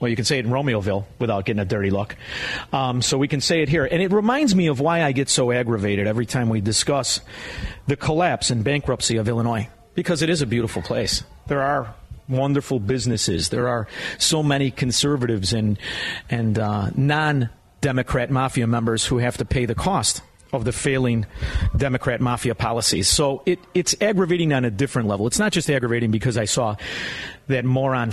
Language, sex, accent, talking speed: English, male, American, 190 wpm